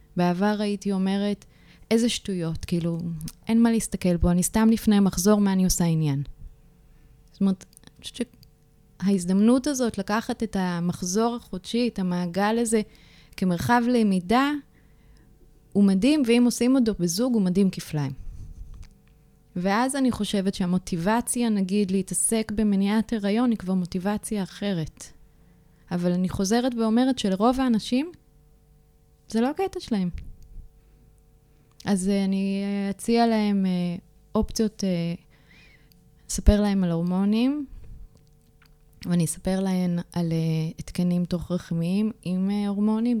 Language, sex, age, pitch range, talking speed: Hebrew, female, 20-39, 175-220 Hz, 115 wpm